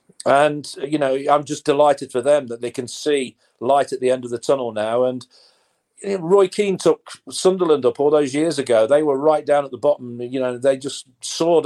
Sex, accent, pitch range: male, British, 125-160 Hz